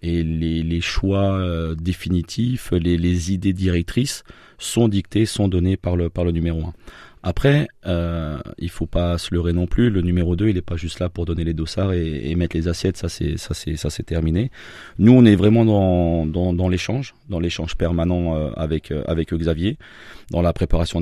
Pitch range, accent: 85-100 Hz, French